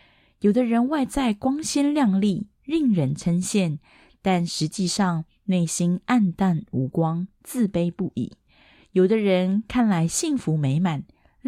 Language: Chinese